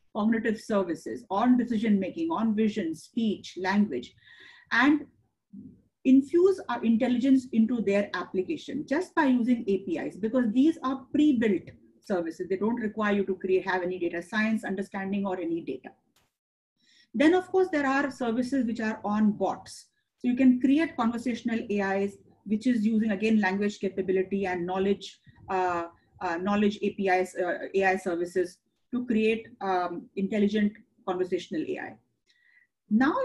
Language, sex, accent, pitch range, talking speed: English, female, Indian, 195-260 Hz, 135 wpm